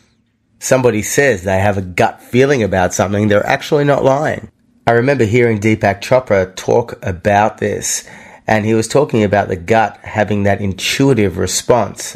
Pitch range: 100-115 Hz